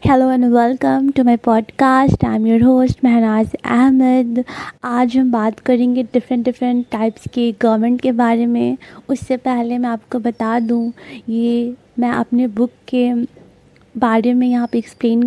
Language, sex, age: Hindi, female, 20-39